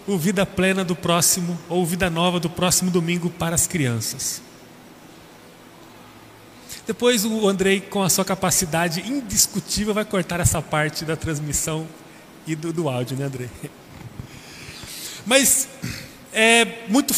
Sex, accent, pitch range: male, Brazilian, 190-245 Hz